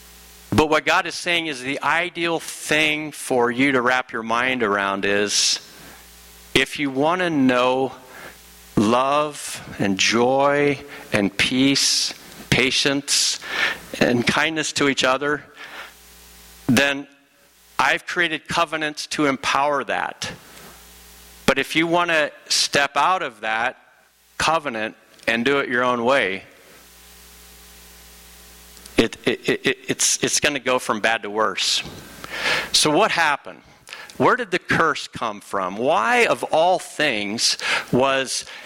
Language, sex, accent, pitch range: English, male, American, 100-150 Hz